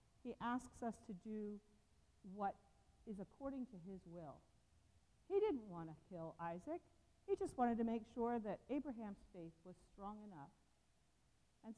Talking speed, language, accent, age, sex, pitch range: 155 wpm, English, American, 50-69, female, 190-245 Hz